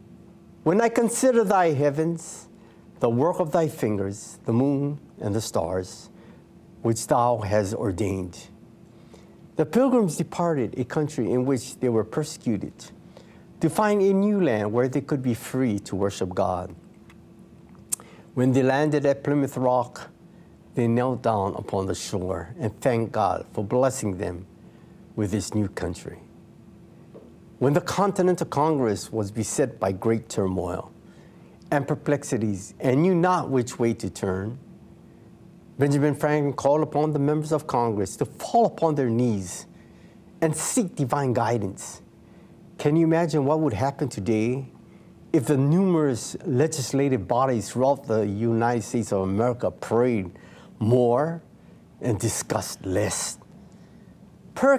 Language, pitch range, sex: English, 110-160 Hz, male